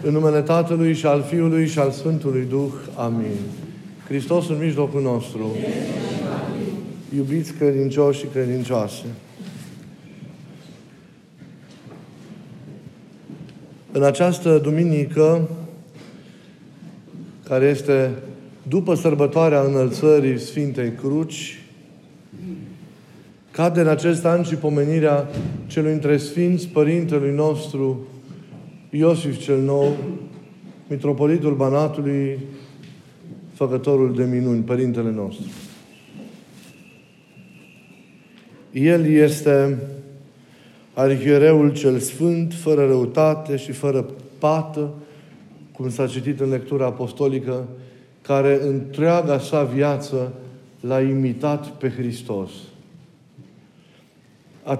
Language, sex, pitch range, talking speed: Romanian, male, 135-160 Hz, 80 wpm